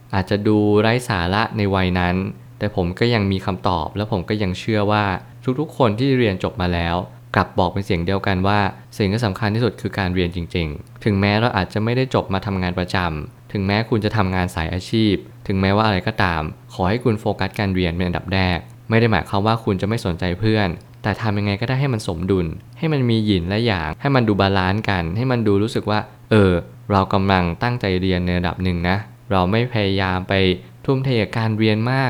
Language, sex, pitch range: Thai, male, 95-115 Hz